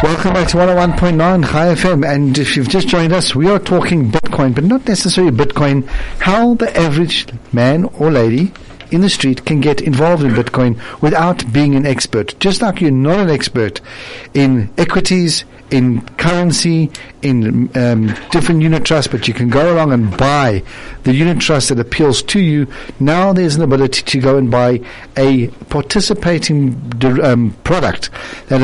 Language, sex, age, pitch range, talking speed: English, male, 60-79, 125-165 Hz, 170 wpm